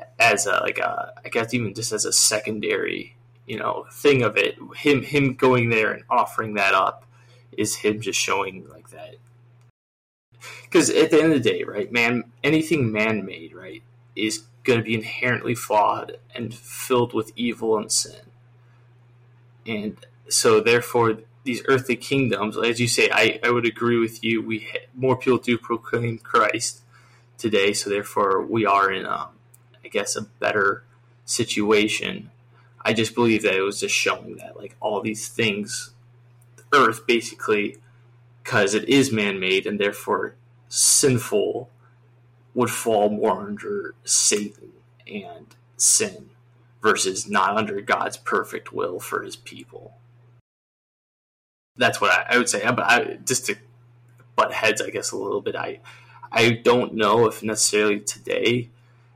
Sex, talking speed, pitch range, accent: male, 155 wpm, 110-125 Hz, American